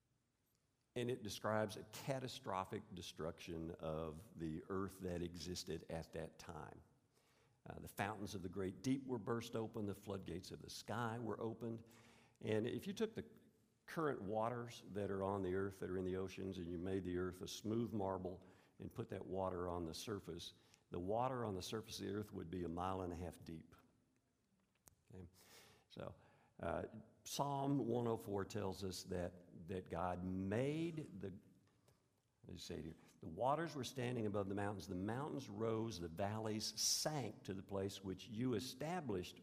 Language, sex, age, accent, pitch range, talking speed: English, male, 50-69, American, 90-115 Hz, 170 wpm